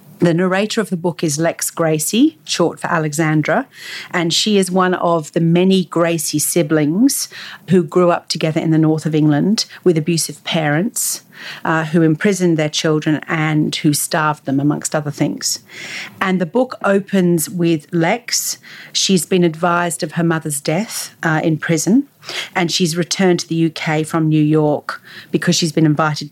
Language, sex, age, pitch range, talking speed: English, female, 40-59, 155-180 Hz, 165 wpm